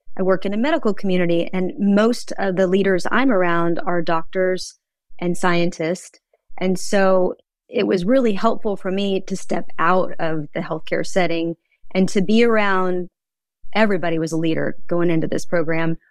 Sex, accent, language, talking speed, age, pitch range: female, American, English, 165 wpm, 30-49, 170-205 Hz